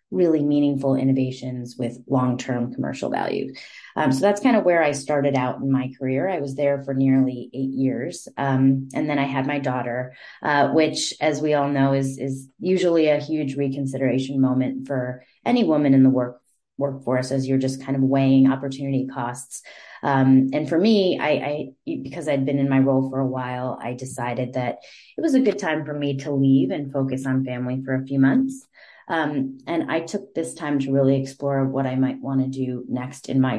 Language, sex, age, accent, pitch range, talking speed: English, female, 30-49, American, 130-150 Hz, 205 wpm